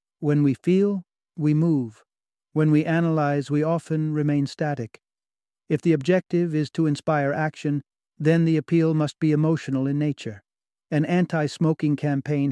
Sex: male